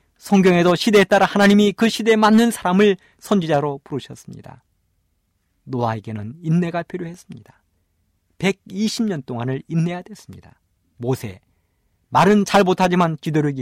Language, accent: Korean, native